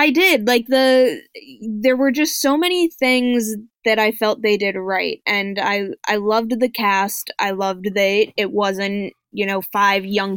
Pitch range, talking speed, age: 200-265 Hz, 180 wpm, 10-29